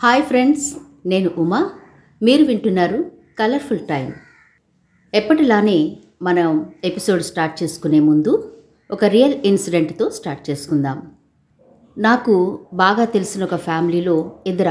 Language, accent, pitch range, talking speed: Telugu, native, 175-235 Hz, 100 wpm